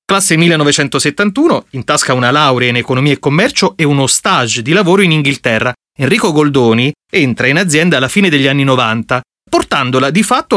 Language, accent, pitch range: Italian, native, 130-205 Hz